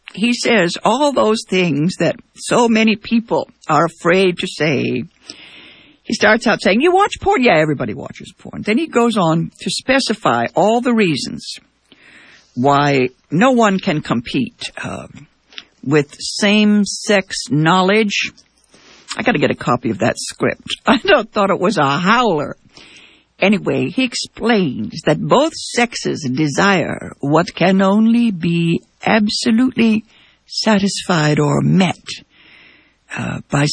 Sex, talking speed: female, 130 wpm